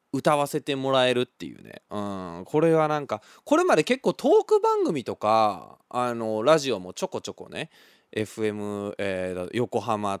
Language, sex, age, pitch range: Japanese, male, 20-39, 105-170 Hz